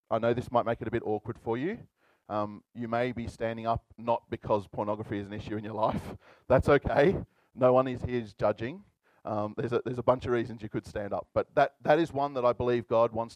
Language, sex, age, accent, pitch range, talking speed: English, male, 30-49, Australian, 115-135 Hz, 245 wpm